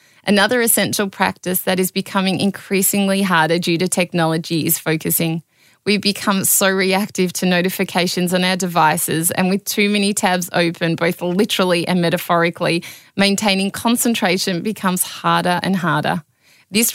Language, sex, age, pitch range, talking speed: English, female, 20-39, 170-195 Hz, 140 wpm